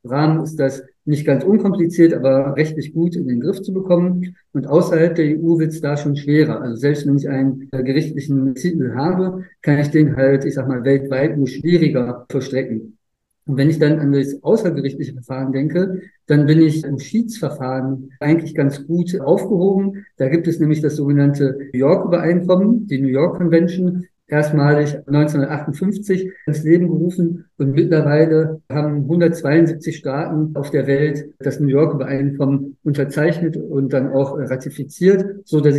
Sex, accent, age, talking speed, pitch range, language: male, German, 50-69, 160 wpm, 140-165 Hz, German